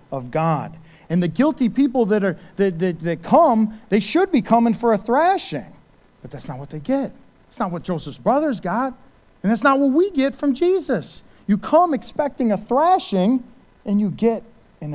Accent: American